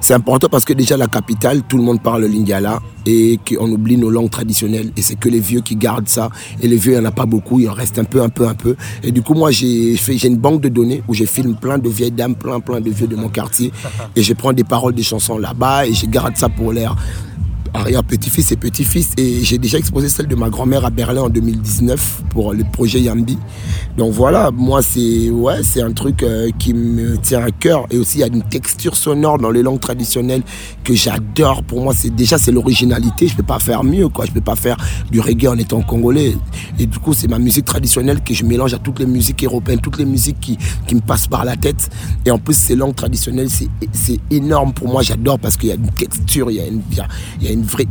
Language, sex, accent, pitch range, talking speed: French, male, French, 110-125 Hz, 250 wpm